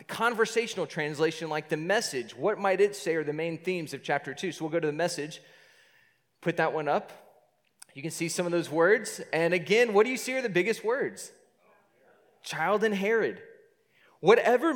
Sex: male